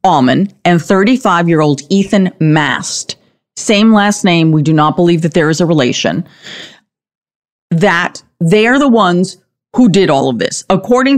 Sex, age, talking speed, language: female, 40-59, 150 wpm, English